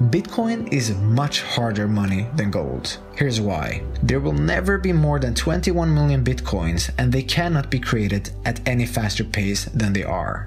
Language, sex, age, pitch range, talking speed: English, male, 20-39, 105-150 Hz, 170 wpm